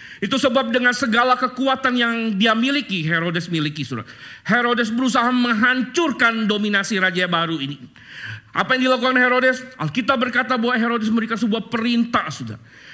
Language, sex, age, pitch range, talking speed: Indonesian, male, 40-59, 160-255 Hz, 140 wpm